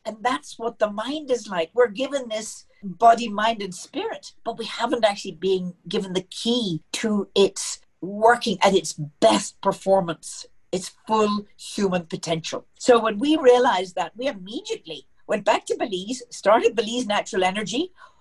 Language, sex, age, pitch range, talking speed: English, female, 50-69, 175-220 Hz, 160 wpm